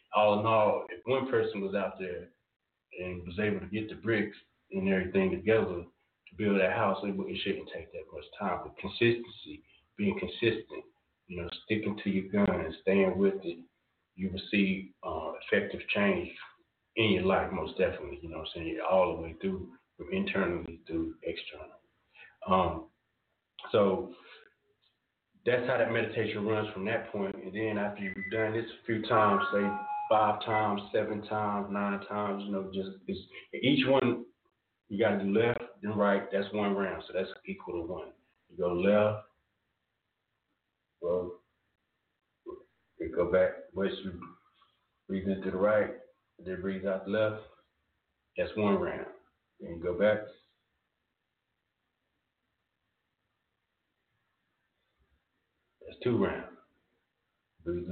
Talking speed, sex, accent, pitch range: 145 wpm, male, American, 95-115 Hz